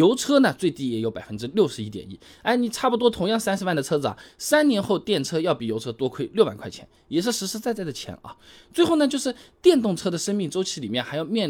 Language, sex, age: Chinese, male, 20-39